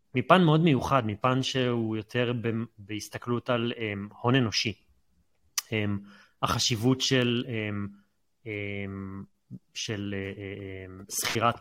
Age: 30-49